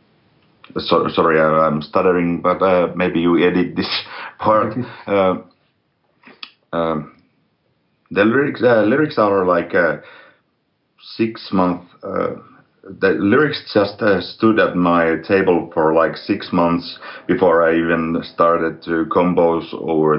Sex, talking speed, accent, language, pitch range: male, 125 wpm, Finnish, English, 80-90 Hz